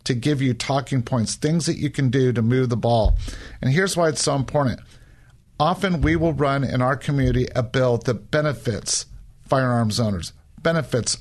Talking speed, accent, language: 180 wpm, American, English